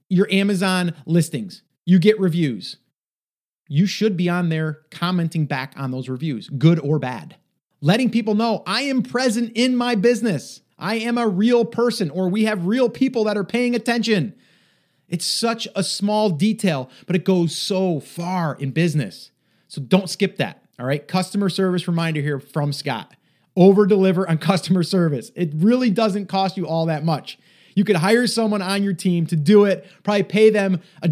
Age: 30-49